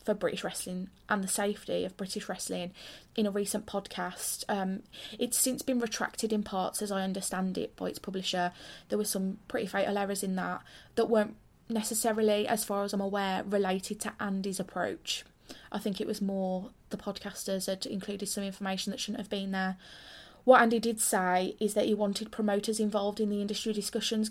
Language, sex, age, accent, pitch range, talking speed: English, female, 20-39, British, 195-220 Hz, 190 wpm